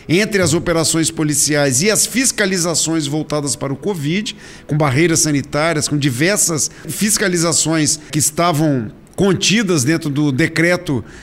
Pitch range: 150-190 Hz